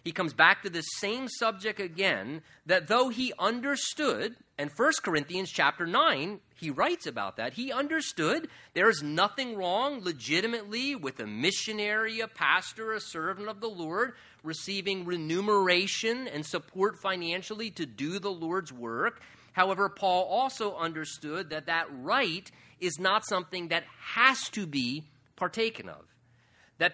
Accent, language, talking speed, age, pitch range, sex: American, English, 145 wpm, 30-49, 165-225 Hz, male